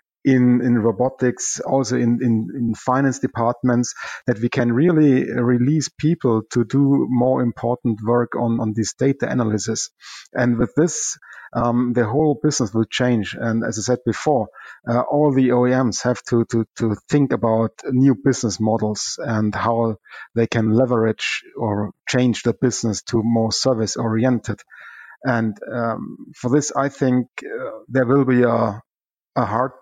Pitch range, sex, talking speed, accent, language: 115-130 Hz, male, 155 wpm, German, English